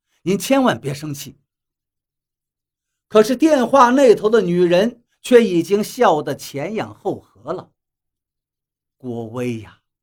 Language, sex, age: Chinese, male, 50-69